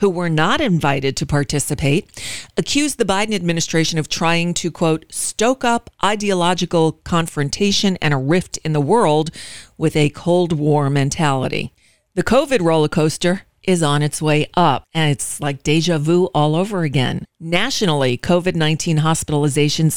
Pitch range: 150-185 Hz